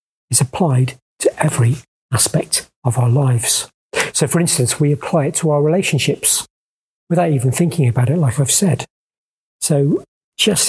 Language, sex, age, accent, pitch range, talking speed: English, male, 40-59, British, 135-165 Hz, 150 wpm